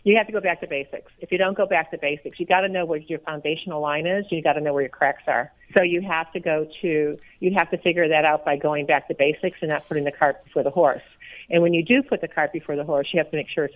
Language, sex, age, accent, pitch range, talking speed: English, female, 50-69, American, 145-175 Hz, 320 wpm